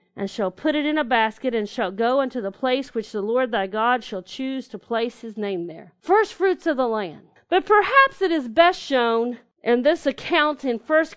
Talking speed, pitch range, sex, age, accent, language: 220 wpm, 230-310 Hz, female, 40-59, American, English